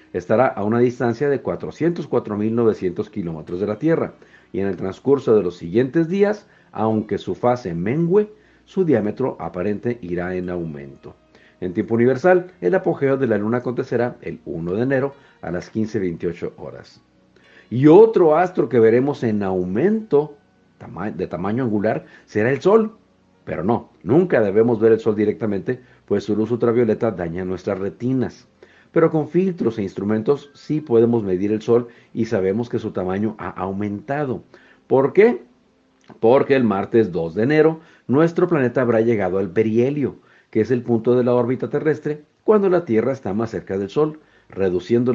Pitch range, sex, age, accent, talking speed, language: 105-145 Hz, male, 50-69, Mexican, 165 wpm, Spanish